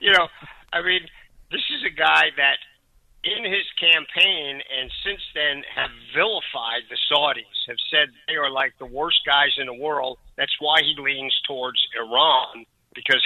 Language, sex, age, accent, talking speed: English, male, 50-69, American, 165 wpm